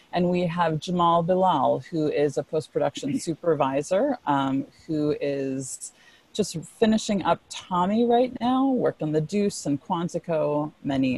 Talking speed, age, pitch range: 140 wpm, 30-49, 145-185 Hz